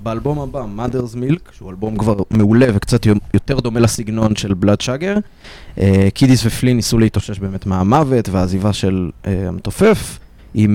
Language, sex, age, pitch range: Hebrew, male, 20-39, 100-120 Hz